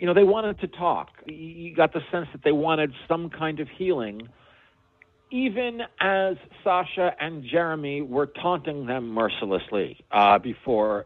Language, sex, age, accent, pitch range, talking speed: English, male, 50-69, American, 115-160 Hz, 150 wpm